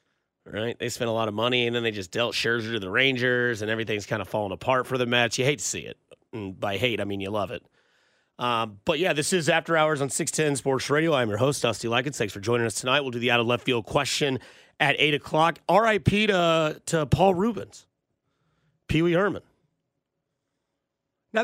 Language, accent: English, American